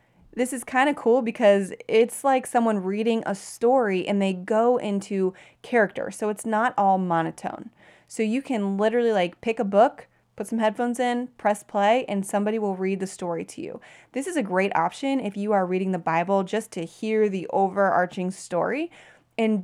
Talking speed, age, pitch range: 190 wpm, 30-49, 190-240 Hz